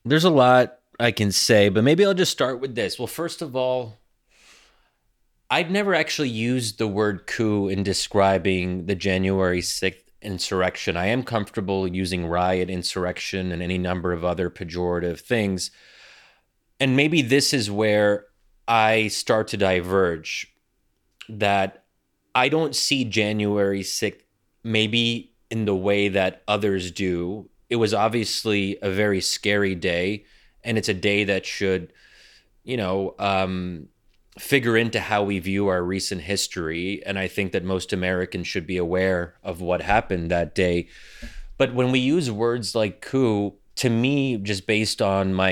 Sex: male